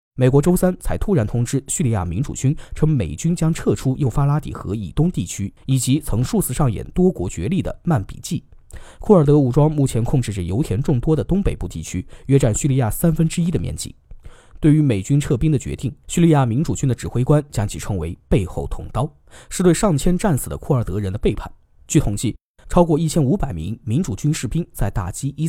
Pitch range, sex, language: 115-160 Hz, male, Chinese